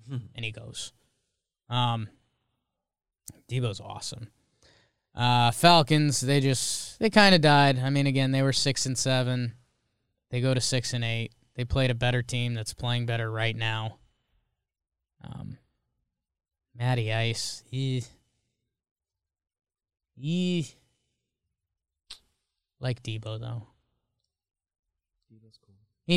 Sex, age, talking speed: male, 10-29, 110 wpm